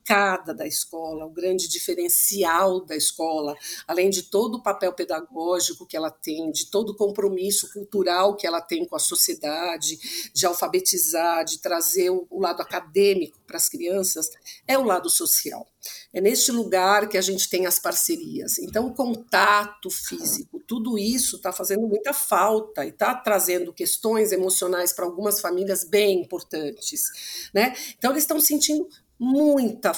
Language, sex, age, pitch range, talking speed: Portuguese, female, 50-69, 185-290 Hz, 150 wpm